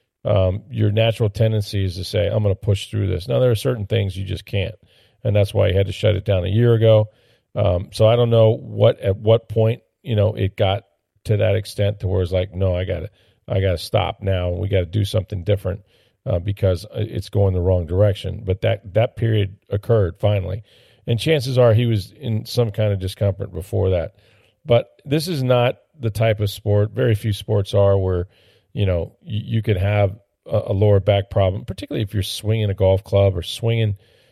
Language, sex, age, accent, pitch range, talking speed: English, male, 40-59, American, 95-110 Hz, 215 wpm